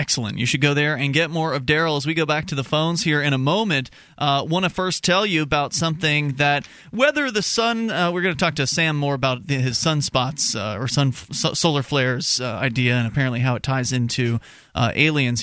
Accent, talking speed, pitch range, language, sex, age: American, 240 wpm, 125-165 Hz, English, male, 30-49